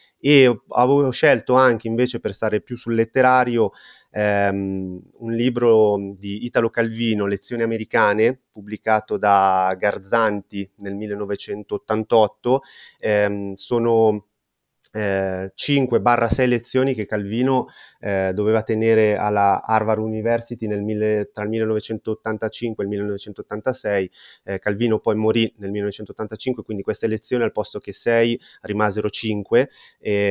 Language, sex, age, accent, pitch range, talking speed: Italian, male, 30-49, native, 100-115 Hz, 120 wpm